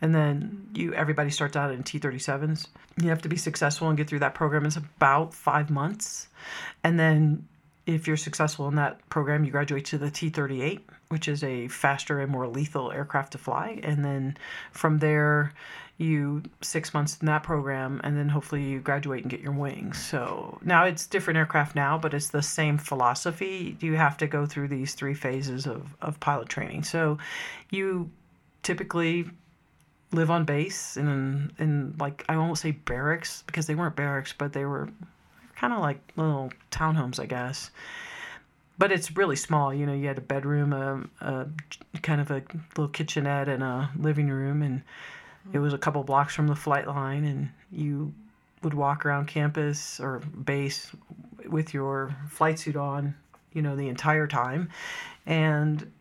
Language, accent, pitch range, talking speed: English, American, 140-160 Hz, 175 wpm